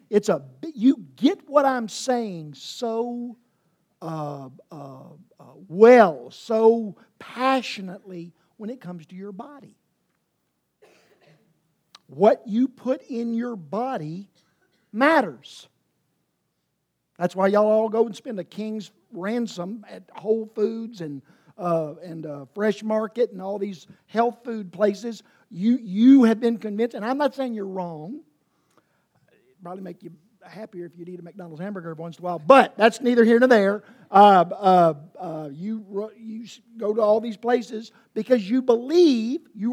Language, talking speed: English, 145 wpm